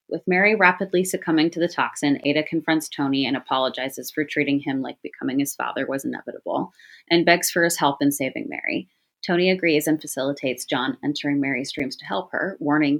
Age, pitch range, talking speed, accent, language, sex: 30-49, 140-180 Hz, 190 wpm, American, English, female